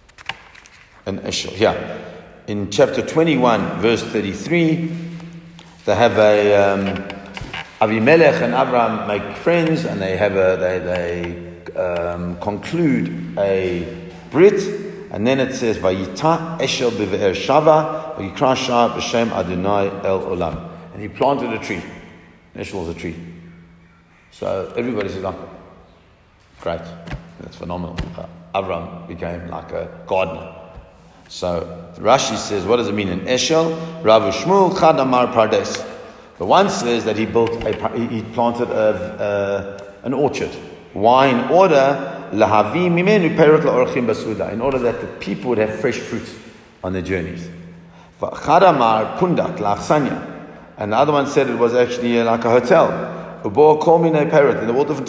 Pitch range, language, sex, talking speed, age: 95-135 Hz, English, male, 125 wpm, 50-69